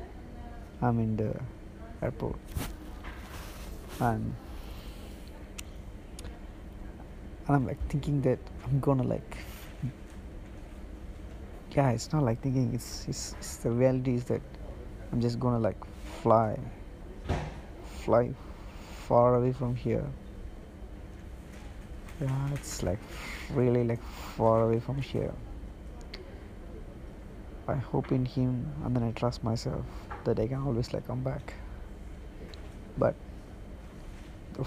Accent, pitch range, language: Indian, 95-125 Hz, English